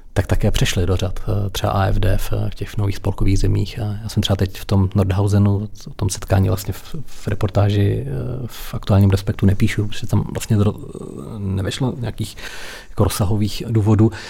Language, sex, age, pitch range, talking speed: Czech, male, 40-59, 100-105 Hz, 155 wpm